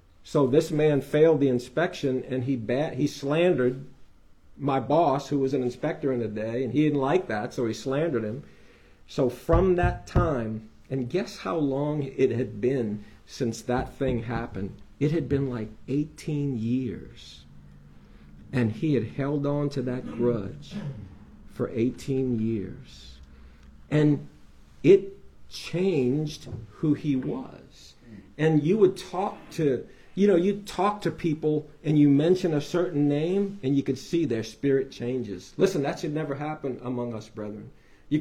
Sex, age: male, 50-69